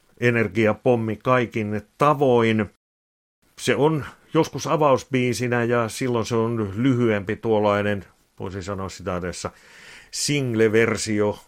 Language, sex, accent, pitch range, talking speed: Finnish, male, native, 100-120 Hz, 95 wpm